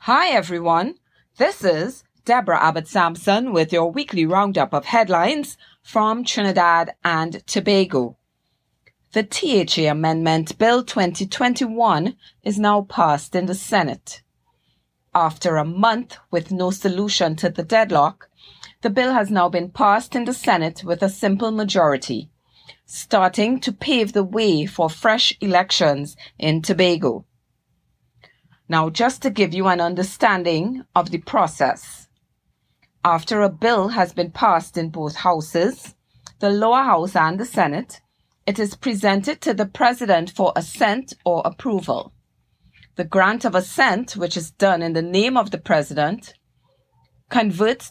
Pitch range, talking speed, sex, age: 165-220 Hz, 135 wpm, female, 30-49